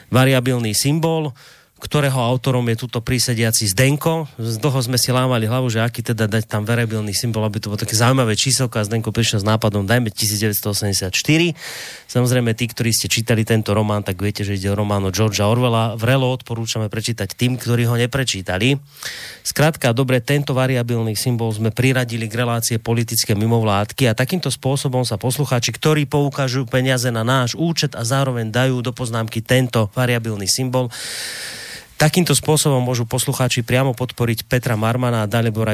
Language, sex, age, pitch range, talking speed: Slovak, male, 30-49, 110-135 Hz, 165 wpm